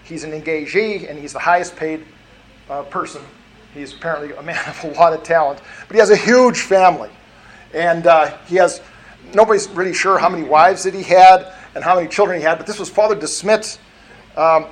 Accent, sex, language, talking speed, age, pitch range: American, male, English, 205 wpm, 50-69, 155-190 Hz